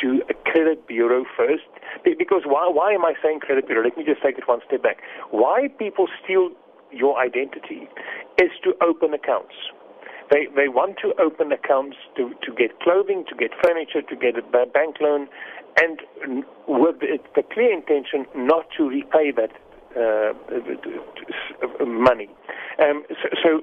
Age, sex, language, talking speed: 40-59, male, English, 155 wpm